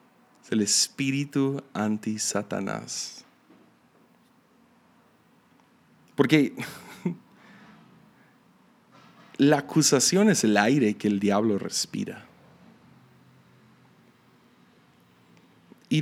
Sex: male